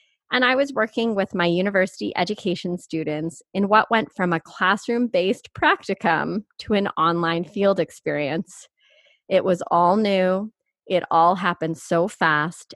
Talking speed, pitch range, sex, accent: 140 wpm, 170-220 Hz, female, American